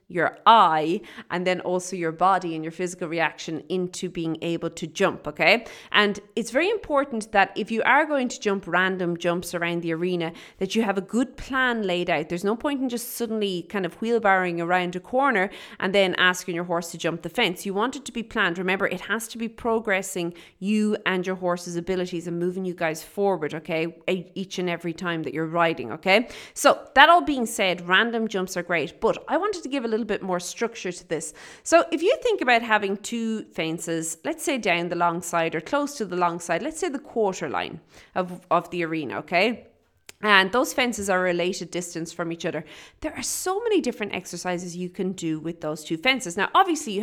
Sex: female